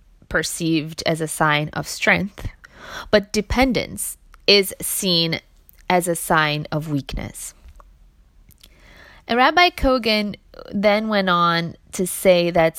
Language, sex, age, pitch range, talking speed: English, female, 20-39, 150-205 Hz, 115 wpm